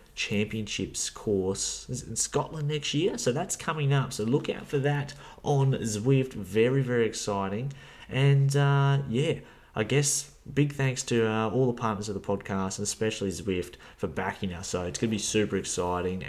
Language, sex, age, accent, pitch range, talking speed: English, male, 30-49, Australian, 95-115 Hz, 175 wpm